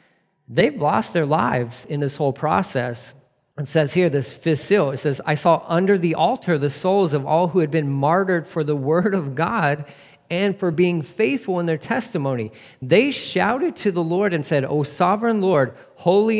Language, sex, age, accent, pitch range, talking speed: English, male, 40-59, American, 125-175 Hz, 185 wpm